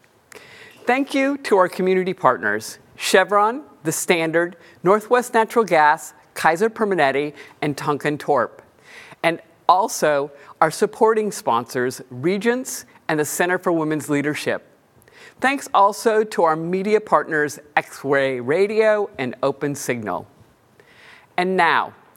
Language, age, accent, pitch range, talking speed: English, 50-69, American, 145-200 Hz, 115 wpm